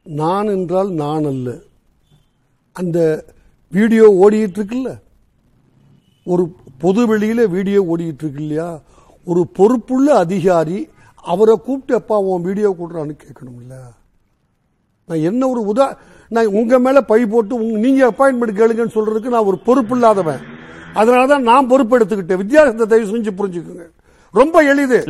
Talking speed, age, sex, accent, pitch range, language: 75 wpm, 50-69, male, native, 175-255 Hz, Tamil